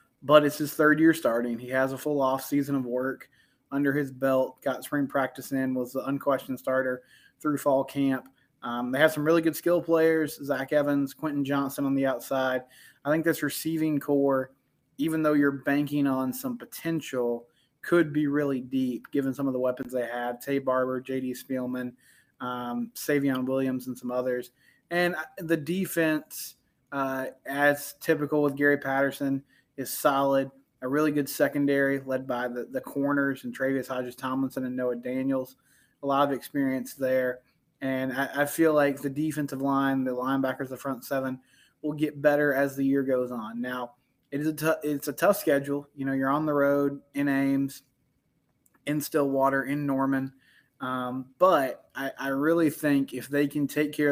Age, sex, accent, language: 20-39, male, American, English